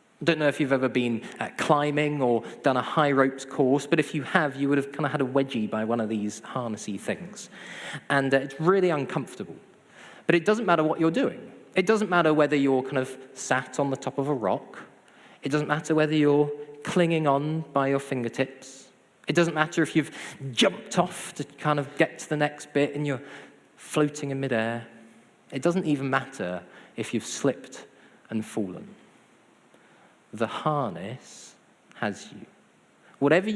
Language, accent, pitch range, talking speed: English, British, 130-170 Hz, 180 wpm